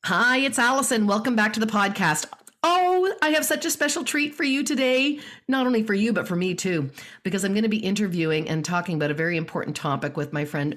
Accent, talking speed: American, 235 wpm